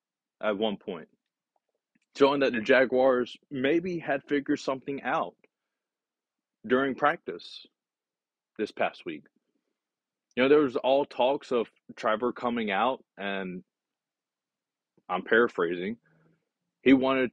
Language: English